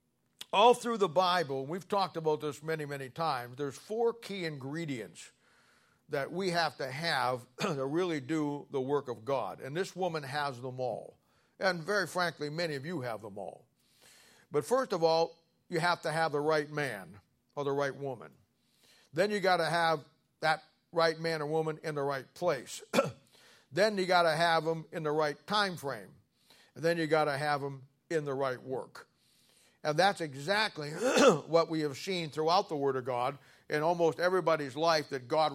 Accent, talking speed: American, 185 wpm